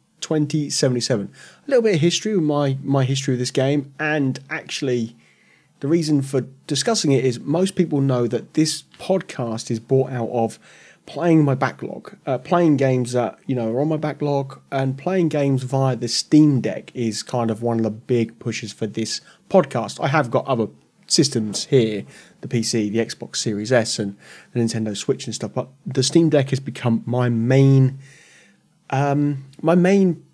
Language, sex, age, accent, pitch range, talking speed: English, male, 30-49, British, 120-155 Hz, 180 wpm